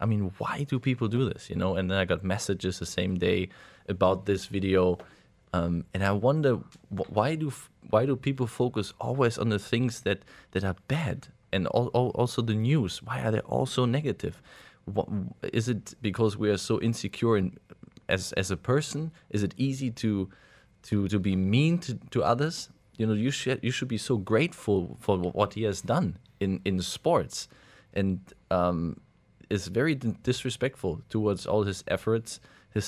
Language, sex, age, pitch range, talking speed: English, male, 20-39, 90-120 Hz, 185 wpm